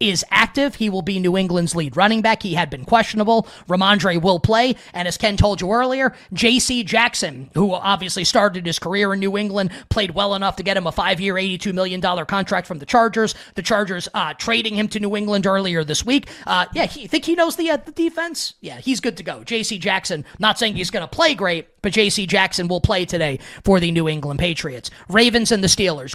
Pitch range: 180-220 Hz